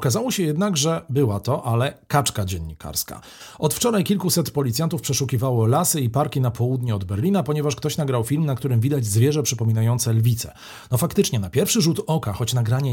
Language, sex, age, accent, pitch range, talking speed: Polish, male, 40-59, native, 110-155 Hz, 180 wpm